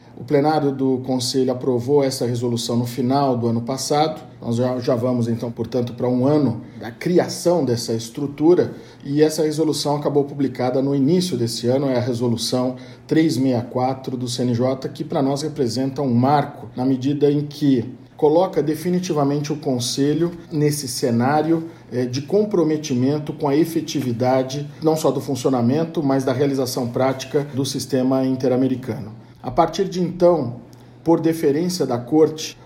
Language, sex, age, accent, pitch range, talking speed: Portuguese, male, 50-69, Brazilian, 125-155 Hz, 145 wpm